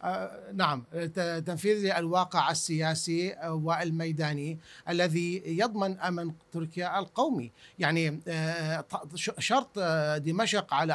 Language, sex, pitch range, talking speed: Arabic, male, 175-225 Hz, 75 wpm